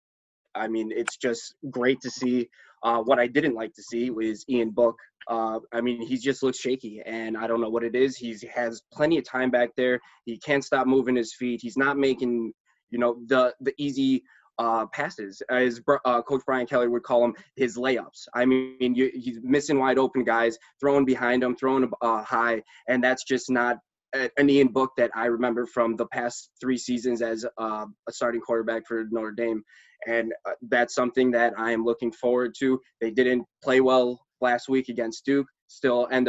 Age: 20-39